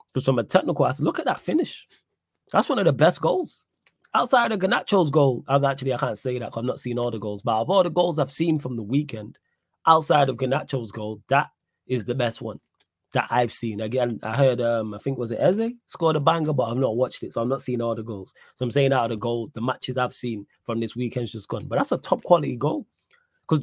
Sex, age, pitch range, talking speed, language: male, 20-39, 115-155 Hz, 255 wpm, English